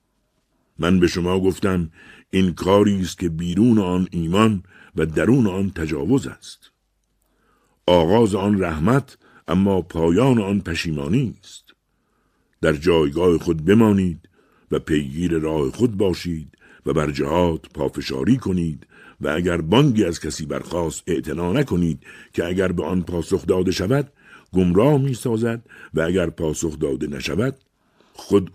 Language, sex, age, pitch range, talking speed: Persian, male, 60-79, 80-105 Hz, 130 wpm